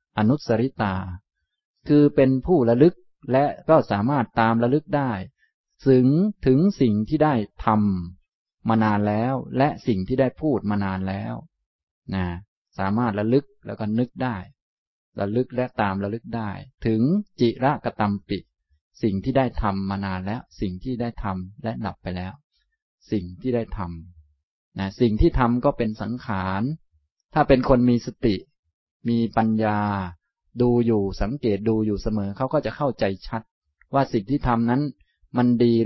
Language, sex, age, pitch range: Thai, male, 20-39, 100-130 Hz